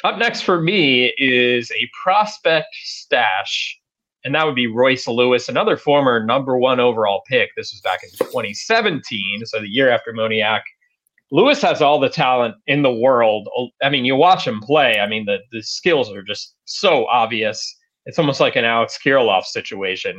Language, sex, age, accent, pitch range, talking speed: English, male, 30-49, American, 120-170 Hz, 180 wpm